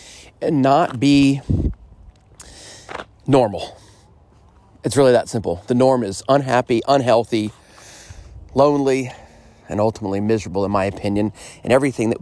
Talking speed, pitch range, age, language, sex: 115 wpm, 100-120 Hz, 30-49, English, male